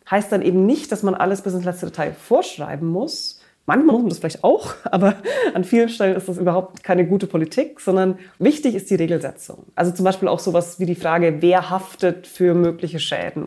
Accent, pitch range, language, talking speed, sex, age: German, 165-195 Hz, German, 210 wpm, female, 20-39